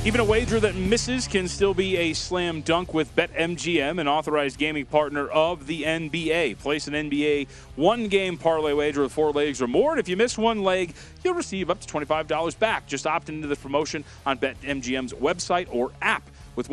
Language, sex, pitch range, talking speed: English, male, 130-180 Hz, 195 wpm